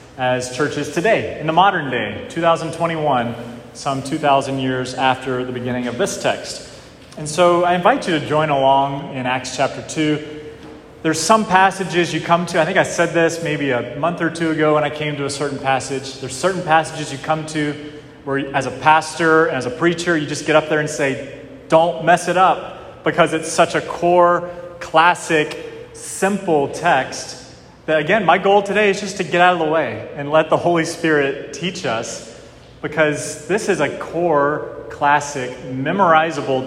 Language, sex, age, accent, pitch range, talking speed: English, male, 30-49, American, 130-170 Hz, 180 wpm